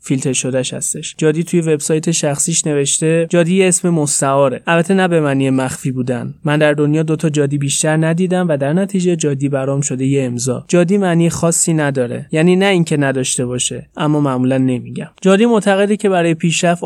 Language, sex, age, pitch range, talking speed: Persian, male, 20-39, 140-165 Hz, 180 wpm